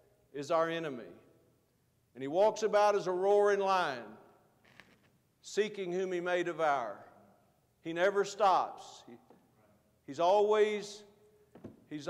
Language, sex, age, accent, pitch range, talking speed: English, male, 50-69, American, 190-235 Hz, 105 wpm